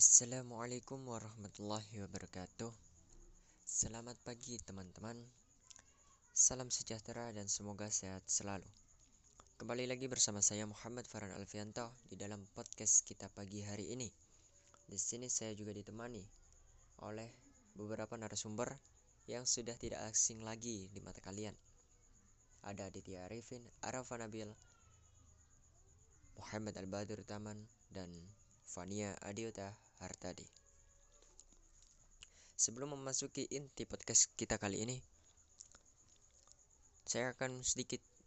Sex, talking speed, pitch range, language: female, 100 wpm, 95-115 Hz, Indonesian